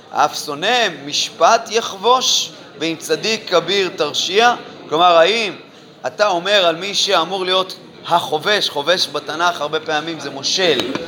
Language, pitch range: Hebrew, 165-225 Hz